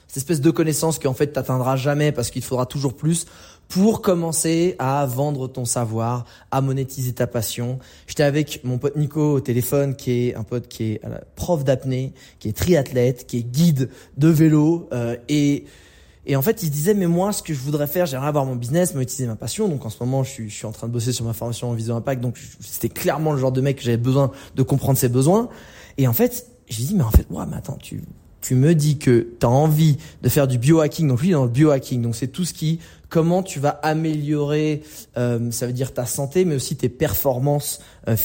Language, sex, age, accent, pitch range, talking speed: French, male, 20-39, French, 120-155 Hz, 235 wpm